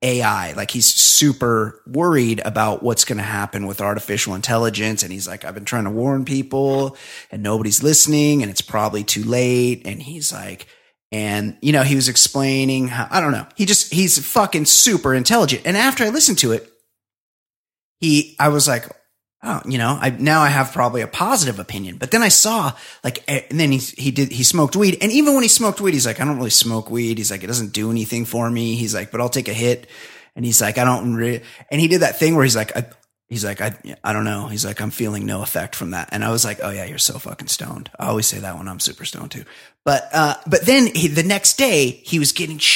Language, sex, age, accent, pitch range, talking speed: English, male, 30-49, American, 115-175 Hz, 240 wpm